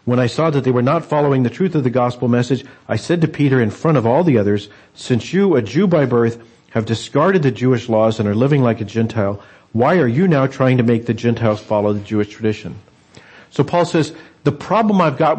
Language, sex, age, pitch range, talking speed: English, male, 50-69, 115-155 Hz, 240 wpm